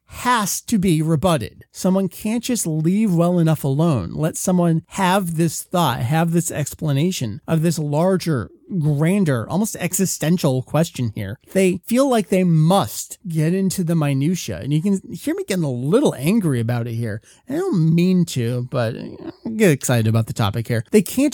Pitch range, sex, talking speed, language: 130-185 Hz, male, 175 wpm, English